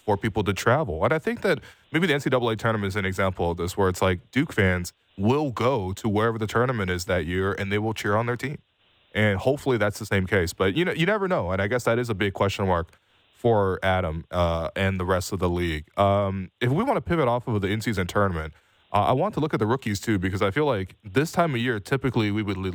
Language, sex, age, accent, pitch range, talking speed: English, male, 20-39, American, 95-125 Hz, 265 wpm